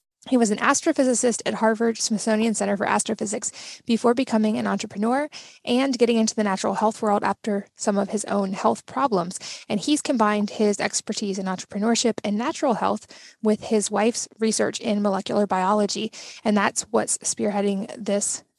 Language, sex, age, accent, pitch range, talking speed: English, female, 20-39, American, 205-235 Hz, 160 wpm